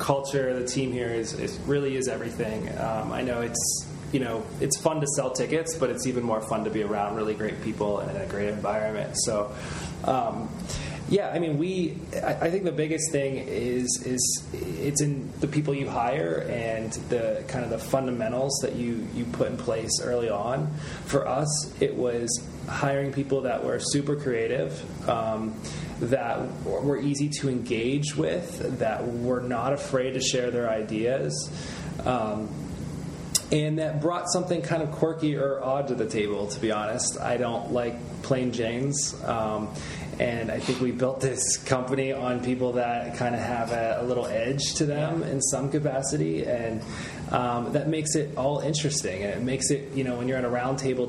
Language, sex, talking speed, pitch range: English, male, 185 wpm, 115-140 Hz